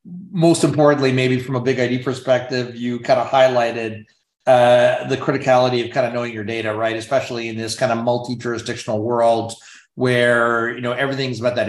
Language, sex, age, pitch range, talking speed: English, male, 30-49, 120-140 Hz, 180 wpm